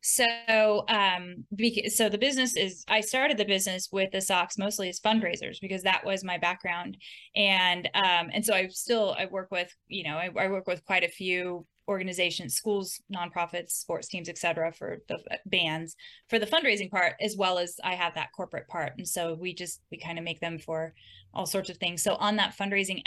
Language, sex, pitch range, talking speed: English, female, 175-200 Hz, 205 wpm